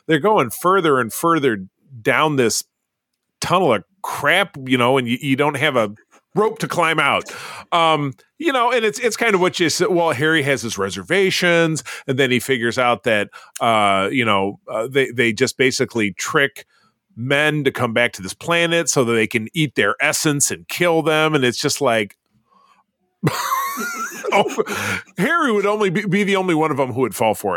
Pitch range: 115-170 Hz